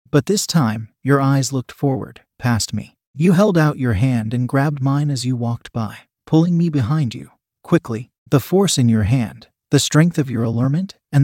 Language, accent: English, American